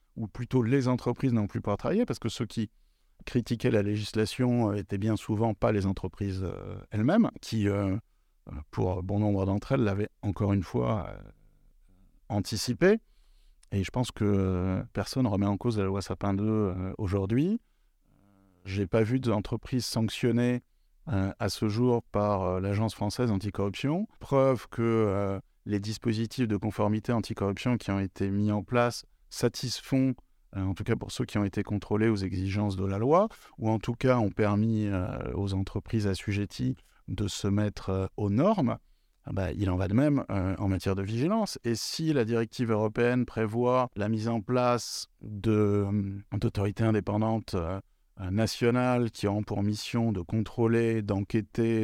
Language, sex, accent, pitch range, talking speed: French, male, French, 100-120 Hz, 160 wpm